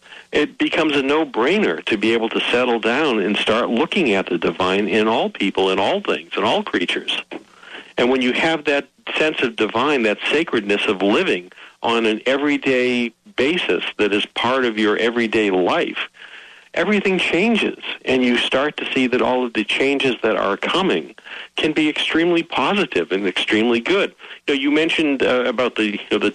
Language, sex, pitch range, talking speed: English, male, 110-140 Hz, 175 wpm